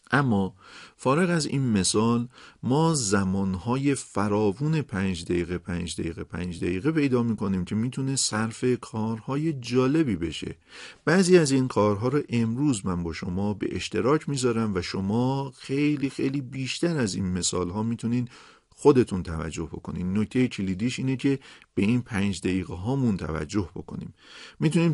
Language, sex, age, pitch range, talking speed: Persian, male, 50-69, 95-130 Hz, 140 wpm